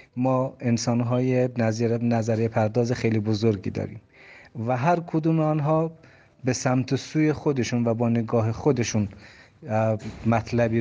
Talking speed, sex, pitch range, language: 120 wpm, male, 110-125 Hz, Persian